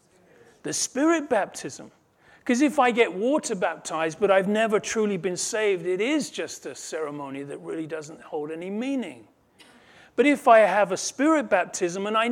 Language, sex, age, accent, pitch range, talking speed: English, male, 40-59, British, 175-255 Hz, 170 wpm